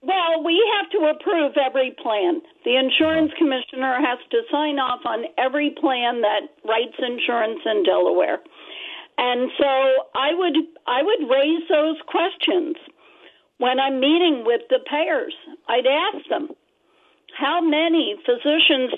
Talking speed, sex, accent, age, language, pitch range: 135 wpm, female, American, 50-69, English, 265-345 Hz